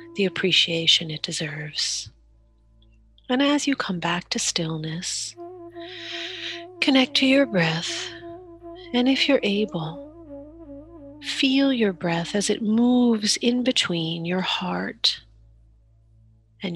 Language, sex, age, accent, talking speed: English, female, 40-59, American, 105 wpm